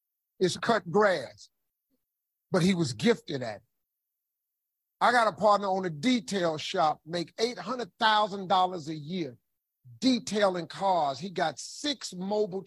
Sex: male